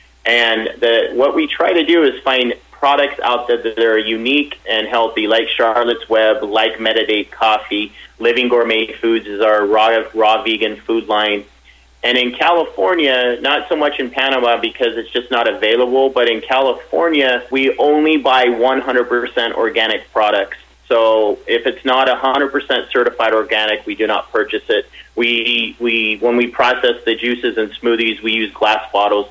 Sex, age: male, 30-49